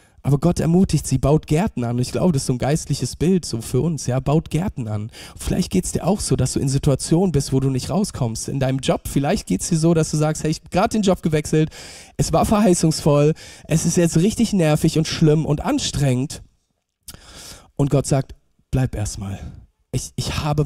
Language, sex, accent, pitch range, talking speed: German, male, German, 120-160 Hz, 220 wpm